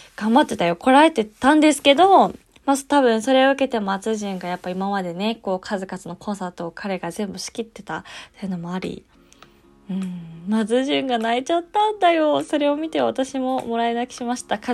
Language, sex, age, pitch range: Japanese, female, 20-39, 195-260 Hz